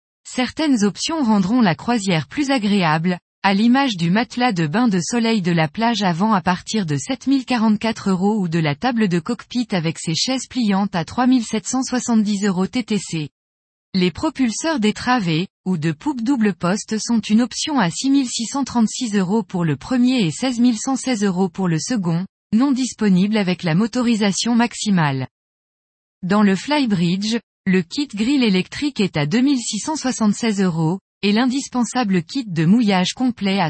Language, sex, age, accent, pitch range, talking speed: French, female, 20-39, French, 185-245 Hz, 155 wpm